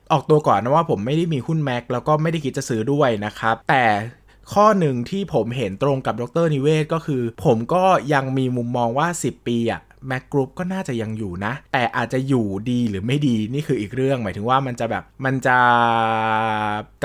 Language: Thai